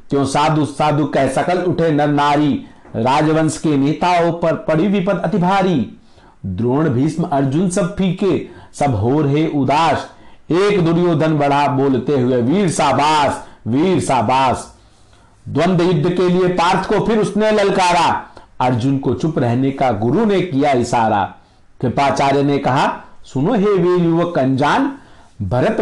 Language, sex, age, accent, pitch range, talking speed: Hindi, male, 50-69, native, 145-200 Hz, 140 wpm